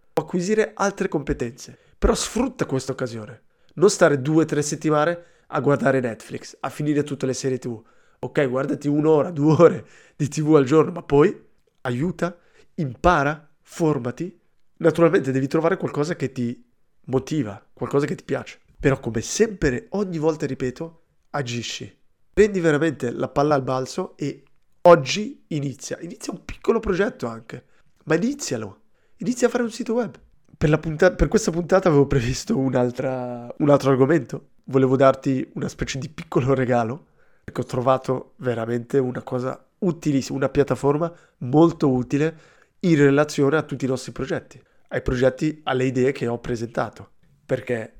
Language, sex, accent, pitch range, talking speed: Italian, male, native, 130-165 Hz, 150 wpm